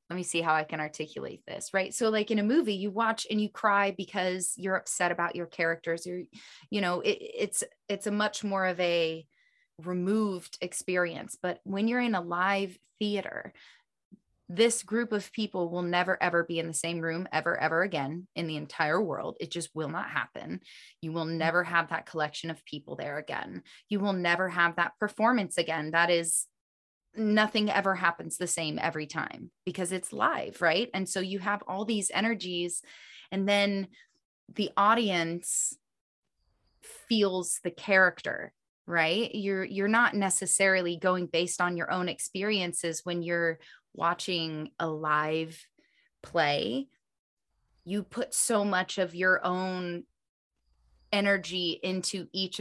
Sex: female